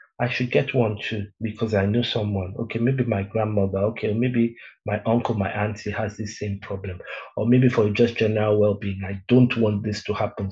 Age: 50-69